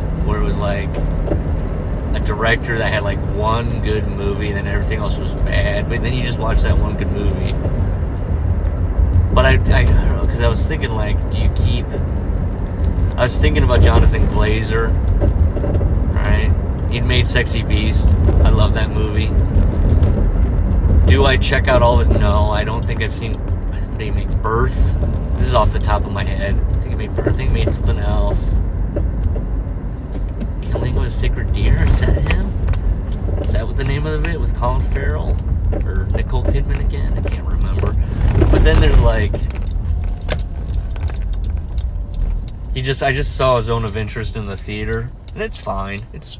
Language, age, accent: English, 30-49, American